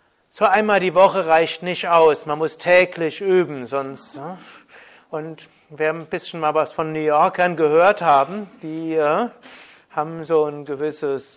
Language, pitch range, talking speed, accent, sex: German, 155-185 Hz, 165 wpm, German, male